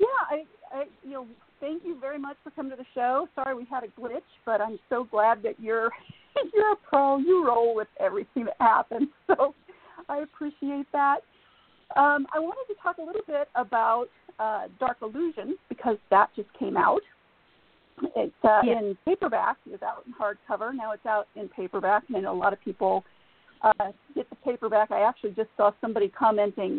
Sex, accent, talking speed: female, American, 190 wpm